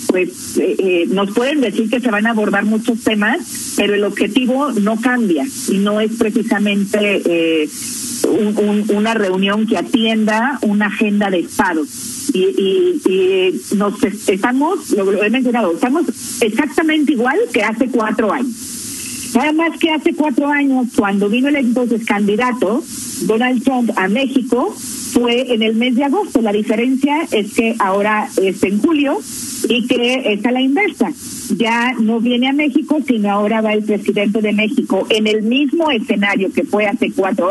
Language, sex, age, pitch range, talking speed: Spanish, female, 50-69, 220-275 Hz, 165 wpm